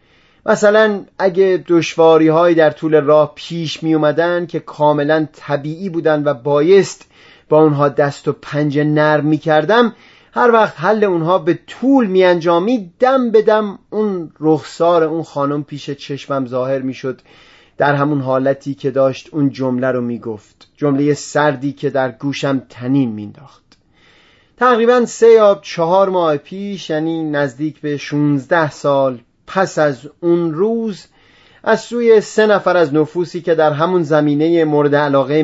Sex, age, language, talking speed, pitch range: male, 30-49, Persian, 145 wpm, 145-180 Hz